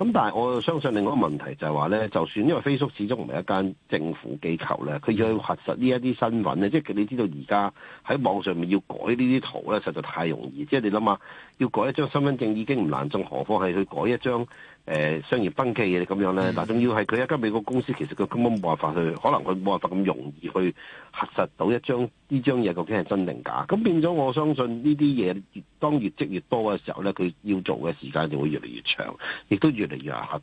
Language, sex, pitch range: Chinese, male, 95-130 Hz